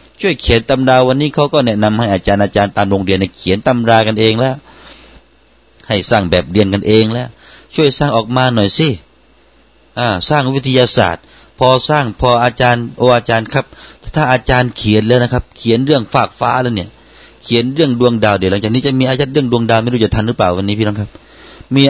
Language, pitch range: Thai, 110-135 Hz